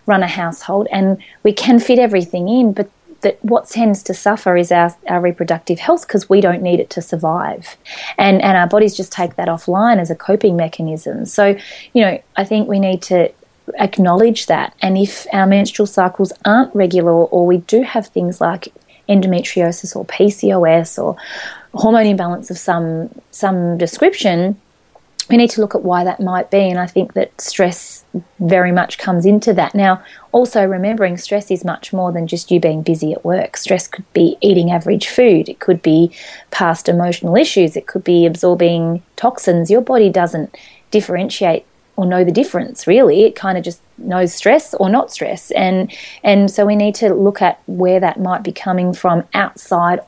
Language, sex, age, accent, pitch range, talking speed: English, female, 30-49, Australian, 175-210 Hz, 185 wpm